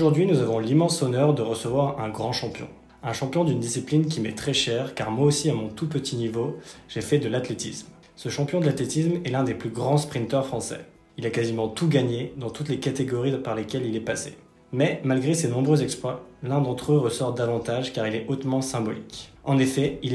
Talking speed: 215 wpm